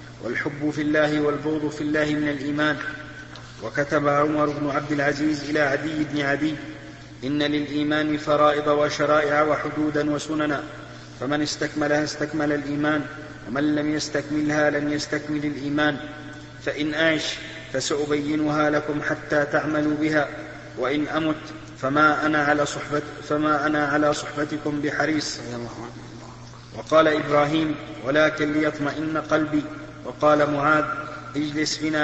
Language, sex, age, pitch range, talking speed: Arabic, male, 40-59, 145-150 Hz, 110 wpm